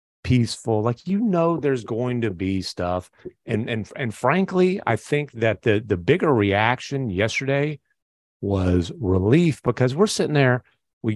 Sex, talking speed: male, 150 wpm